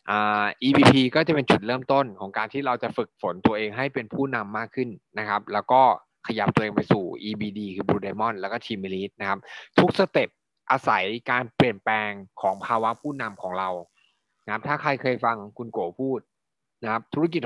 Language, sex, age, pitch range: Thai, male, 20-39, 100-130 Hz